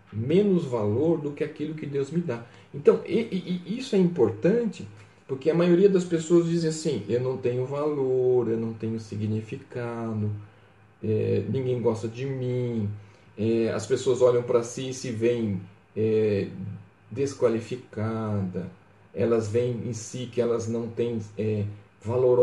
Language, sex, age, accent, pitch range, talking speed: Portuguese, male, 40-59, Brazilian, 105-135 Hz, 135 wpm